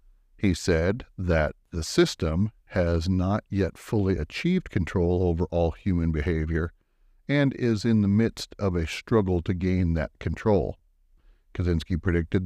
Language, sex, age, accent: Japanese, male, 60-79, American